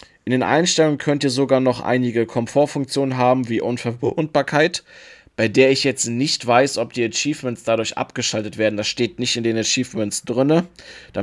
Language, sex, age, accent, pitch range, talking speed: German, male, 20-39, German, 115-135 Hz, 170 wpm